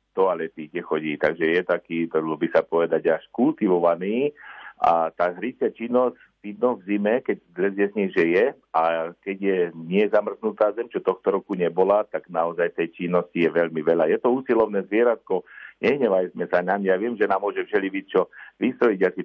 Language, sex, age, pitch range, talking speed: Slovak, male, 50-69, 90-115 Hz, 175 wpm